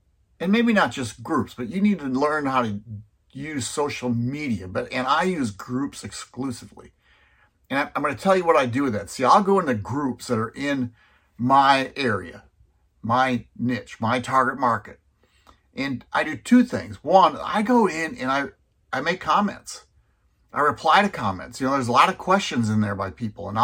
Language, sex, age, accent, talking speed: English, male, 50-69, American, 195 wpm